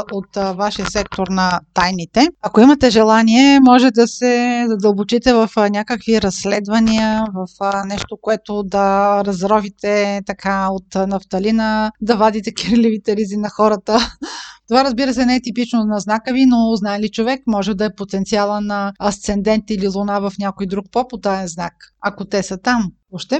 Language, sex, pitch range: Bulgarian, female, 205-255 Hz